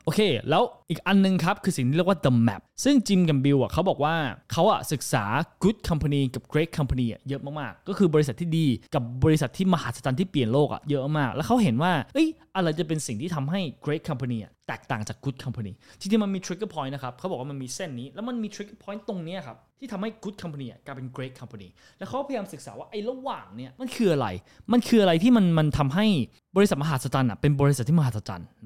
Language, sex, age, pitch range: Thai, male, 20-39, 125-185 Hz